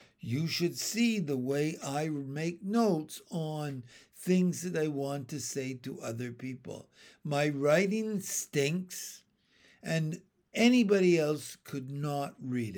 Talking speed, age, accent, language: 125 wpm, 60-79, American, English